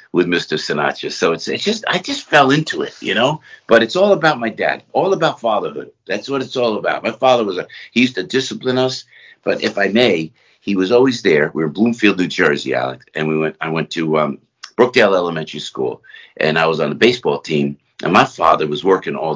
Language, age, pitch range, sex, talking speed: English, 50-69, 90-150 Hz, male, 235 wpm